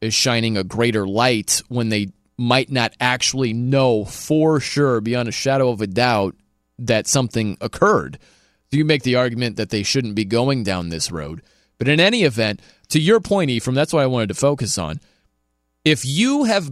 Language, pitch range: English, 110-155 Hz